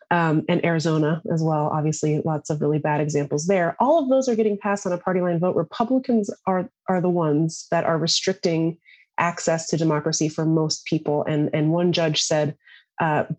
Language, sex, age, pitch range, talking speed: English, female, 30-49, 155-190 Hz, 195 wpm